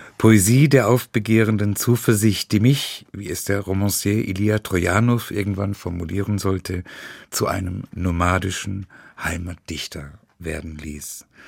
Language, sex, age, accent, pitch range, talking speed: German, male, 50-69, German, 95-120 Hz, 110 wpm